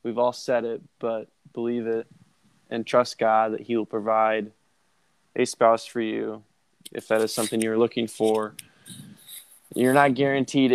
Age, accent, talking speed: 20-39, American, 155 wpm